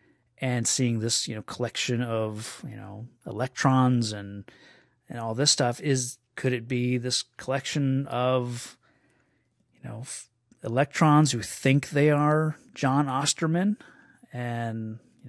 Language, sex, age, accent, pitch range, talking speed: English, male, 30-49, American, 120-140 Hz, 135 wpm